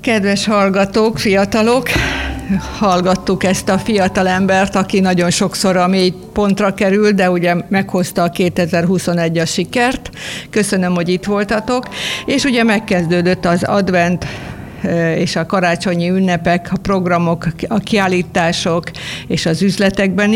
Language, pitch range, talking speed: Hungarian, 175-200 Hz, 125 wpm